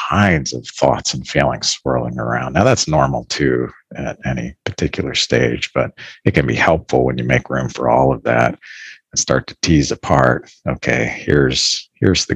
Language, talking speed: English, 180 wpm